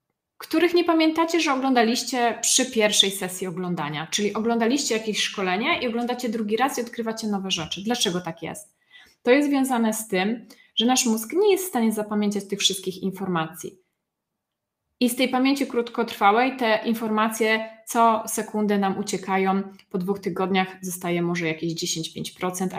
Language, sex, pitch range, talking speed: Polish, female, 190-230 Hz, 155 wpm